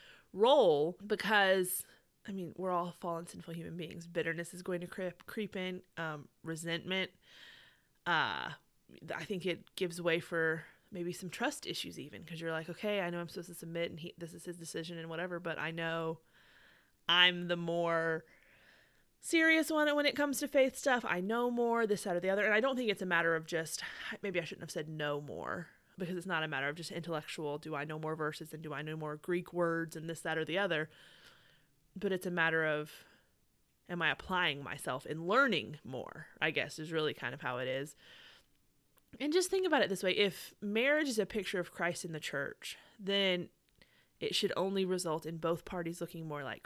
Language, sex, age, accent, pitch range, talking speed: English, female, 20-39, American, 160-195 Hz, 210 wpm